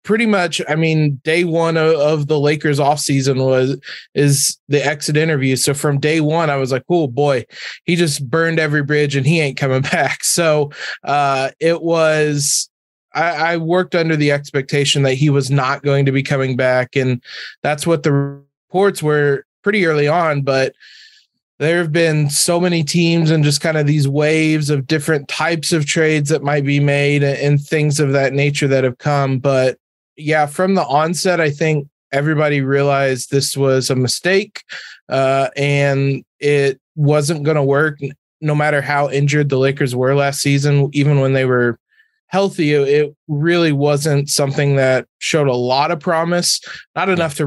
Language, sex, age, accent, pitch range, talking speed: English, male, 20-39, American, 135-160 Hz, 175 wpm